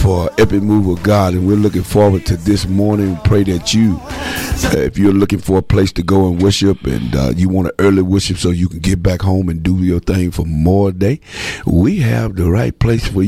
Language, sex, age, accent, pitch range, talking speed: English, male, 50-69, American, 85-100 Hz, 235 wpm